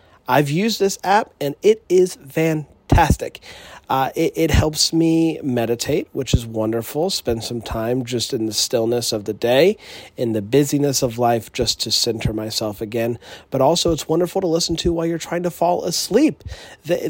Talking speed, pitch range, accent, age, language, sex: 180 wpm, 115-165 Hz, American, 30-49, English, male